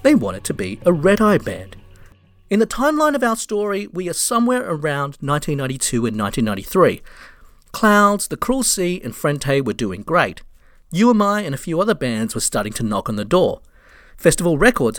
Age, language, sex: 40-59, English, male